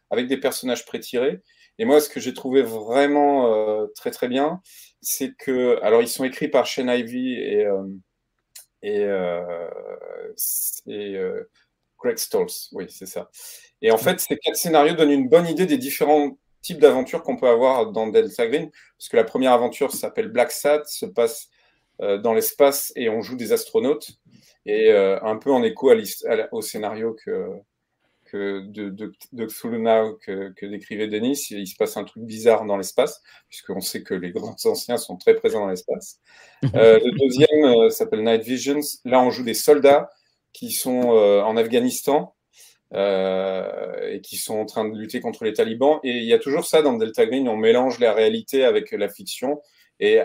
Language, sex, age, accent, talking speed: French, male, 40-59, French, 190 wpm